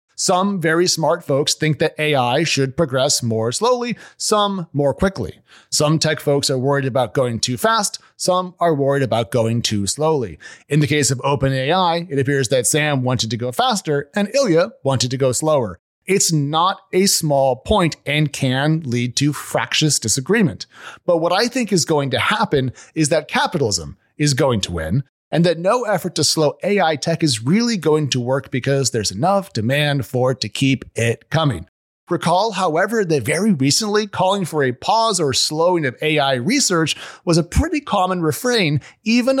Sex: male